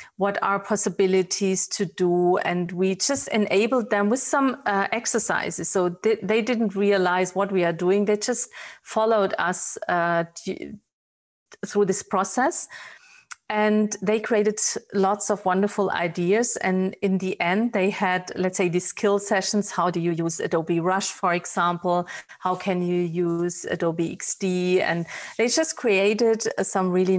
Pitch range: 185-210 Hz